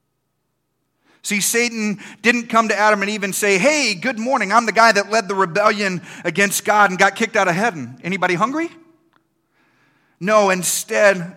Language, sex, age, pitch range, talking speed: English, male, 40-59, 175-220 Hz, 170 wpm